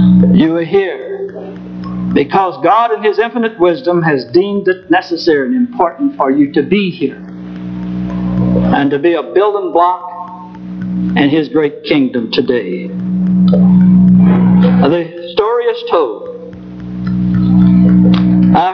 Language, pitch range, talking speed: English, 140-220 Hz, 115 wpm